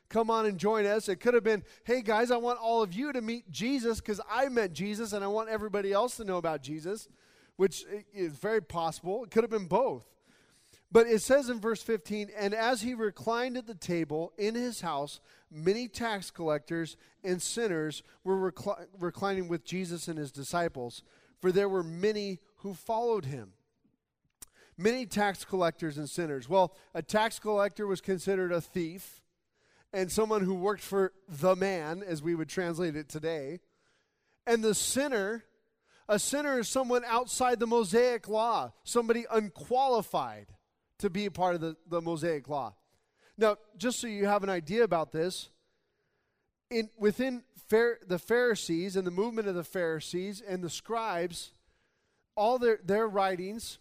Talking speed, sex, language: 170 wpm, male, English